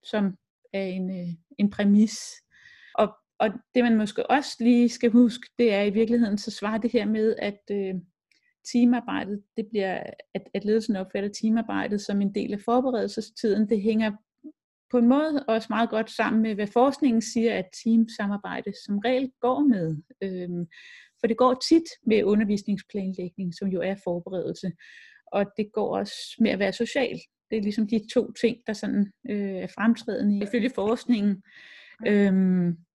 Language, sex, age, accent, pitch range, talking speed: Danish, female, 30-49, native, 200-245 Hz, 170 wpm